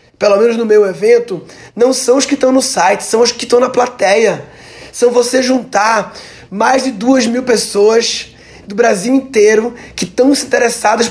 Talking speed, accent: 175 wpm, Brazilian